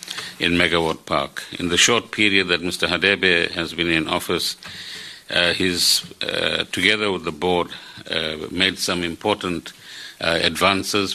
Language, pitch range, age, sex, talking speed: English, 85-95 Hz, 50-69, male, 140 wpm